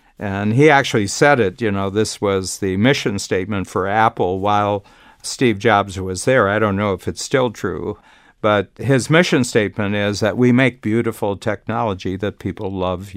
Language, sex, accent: English, male, American